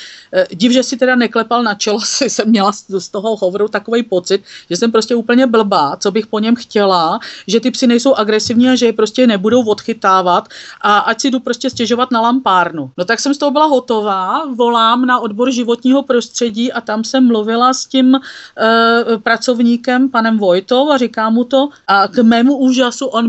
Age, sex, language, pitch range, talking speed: 40-59, female, Czech, 205-245 Hz, 190 wpm